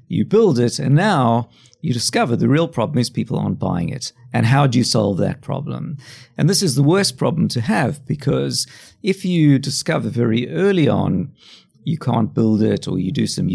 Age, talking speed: 50-69, 200 wpm